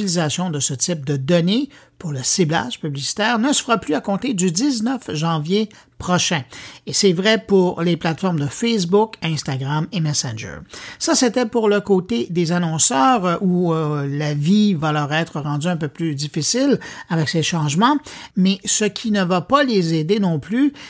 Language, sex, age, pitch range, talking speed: French, male, 50-69, 155-215 Hz, 180 wpm